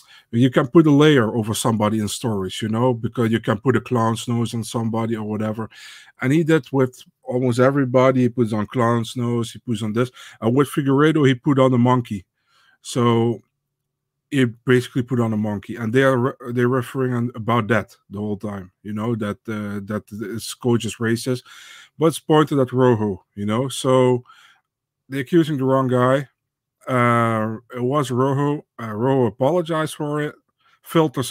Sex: male